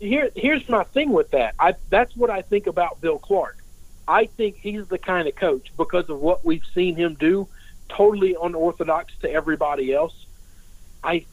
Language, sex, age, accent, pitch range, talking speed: English, male, 50-69, American, 140-205 Hz, 180 wpm